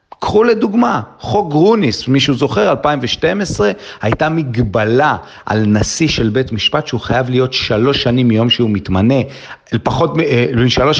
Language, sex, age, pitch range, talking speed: Hebrew, male, 40-59, 115-155 Hz, 130 wpm